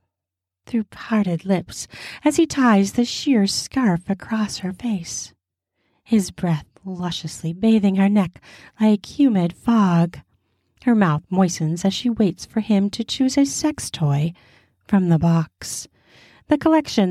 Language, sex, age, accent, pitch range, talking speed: English, female, 40-59, American, 165-215 Hz, 135 wpm